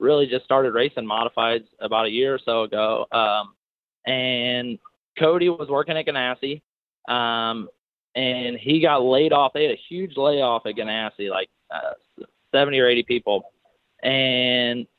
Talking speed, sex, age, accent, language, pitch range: 150 wpm, male, 20-39, American, English, 120-150 Hz